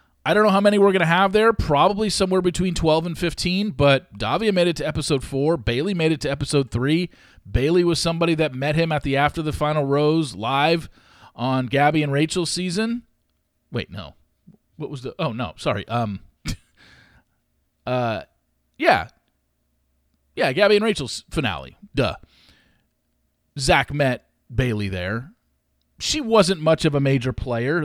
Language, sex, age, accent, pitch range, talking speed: English, male, 40-59, American, 120-175 Hz, 160 wpm